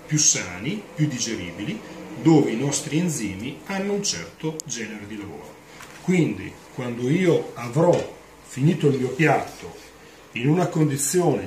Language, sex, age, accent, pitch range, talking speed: Italian, male, 40-59, native, 110-155 Hz, 130 wpm